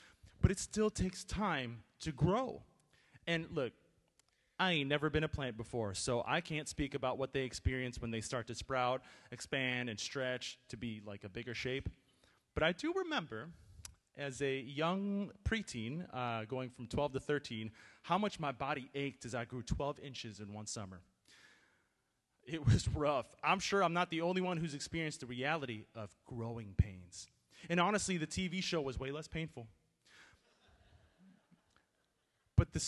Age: 30-49